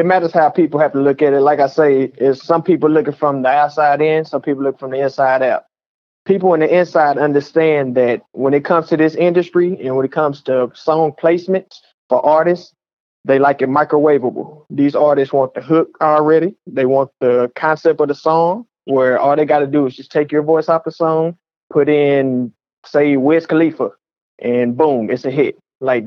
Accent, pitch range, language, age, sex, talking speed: American, 130-160 Hz, English, 30-49, male, 205 wpm